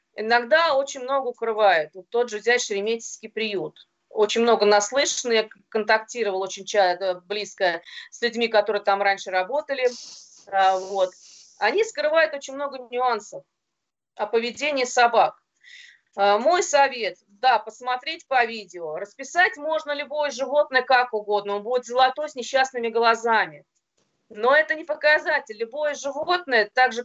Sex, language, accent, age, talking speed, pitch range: female, Russian, native, 30-49, 125 wpm, 220-290 Hz